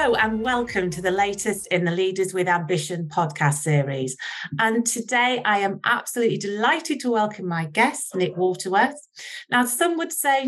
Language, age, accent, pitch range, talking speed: English, 40-59, British, 185-240 Hz, 165 wpm